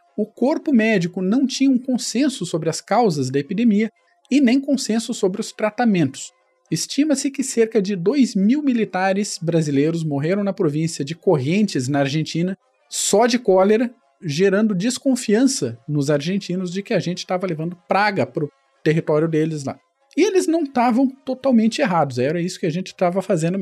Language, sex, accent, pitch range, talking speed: Portuguese, male, Brazilian, 165-220 Hz, 165 wpm